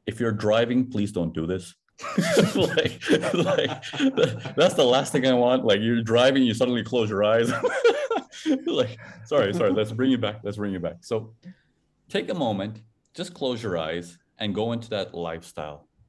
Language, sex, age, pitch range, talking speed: English, male, 30-49, 85-115 Hz, 170 wpm